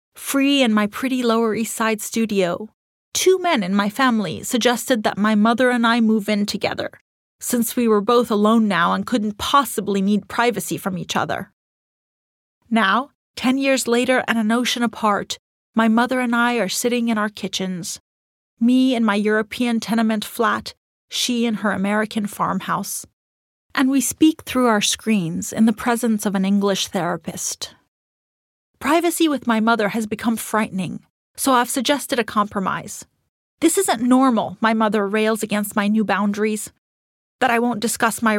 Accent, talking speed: American, 165 wpm